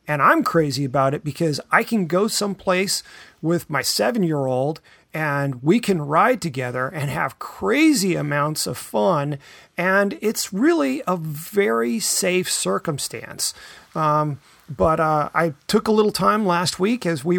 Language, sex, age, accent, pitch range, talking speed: English, male, 30-49, American, 145-185 Hz, 150 wpm